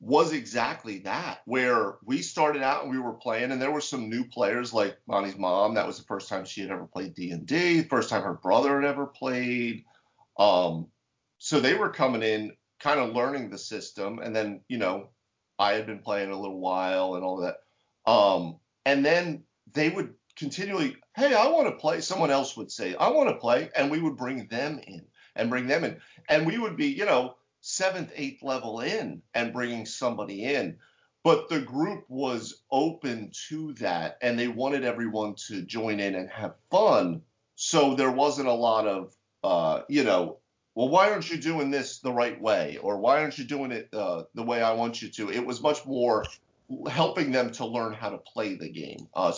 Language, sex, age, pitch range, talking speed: English, male, 40-59, 110-150 Hz, 205 wpm